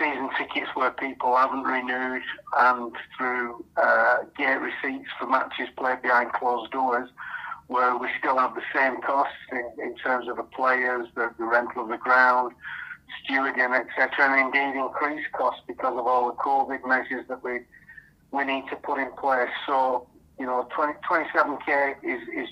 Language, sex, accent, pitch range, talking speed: English, male, British, 125-135 Hz, 165 wpm